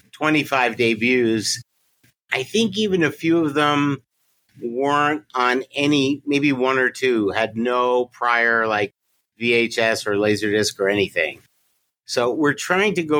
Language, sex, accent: English, male, American